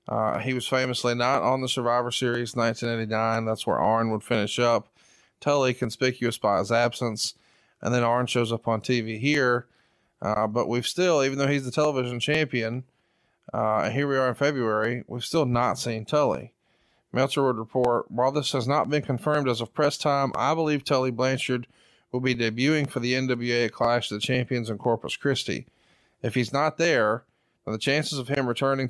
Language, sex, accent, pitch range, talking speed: English, male, American, 115-130 Hz, 185 wpm